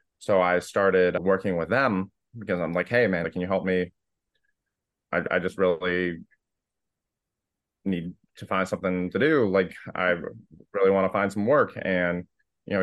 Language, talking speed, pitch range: English, 170 wpm, 85-100 Hz